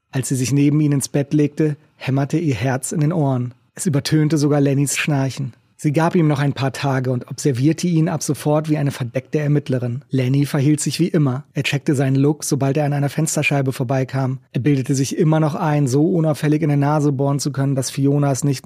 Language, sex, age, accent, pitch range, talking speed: German, male, 30-49, German, 130-150 Hz, 220 wpm